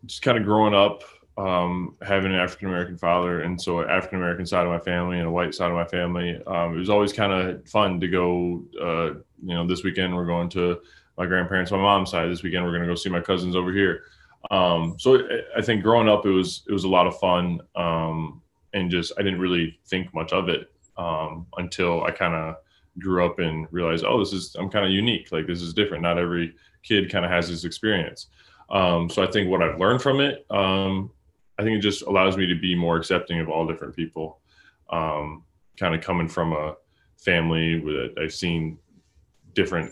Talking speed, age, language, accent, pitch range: 220 wpm, 20-39, English, American, 85-95 Hz